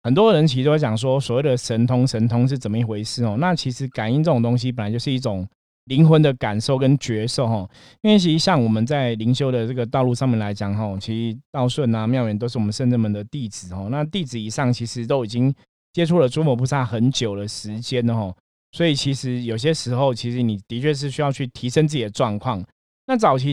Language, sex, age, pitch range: Chinese, male, 20-39, 110-135 Hz